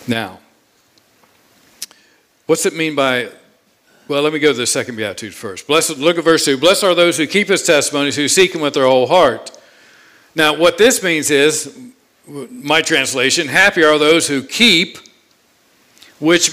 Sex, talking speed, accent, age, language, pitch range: male, 165 wpm, American, 50-69, English, 150-185 Hz